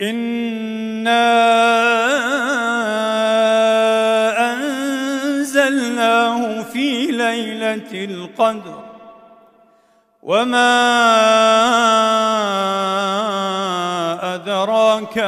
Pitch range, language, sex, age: 220-250 Hz, Arabic, male, 40-59